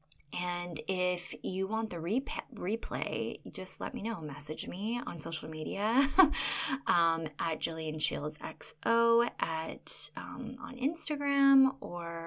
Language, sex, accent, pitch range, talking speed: English, female, American, 165-230 Hz, 120 wpm